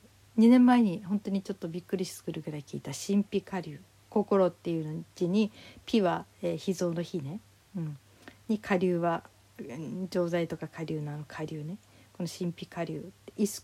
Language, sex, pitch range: Japanese, female, 155-200 Hz